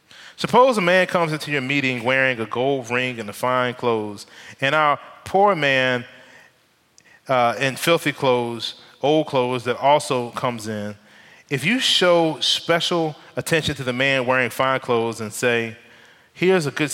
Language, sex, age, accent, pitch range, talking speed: English, male, 30-49, American, 120-155 Hz, 155 wpm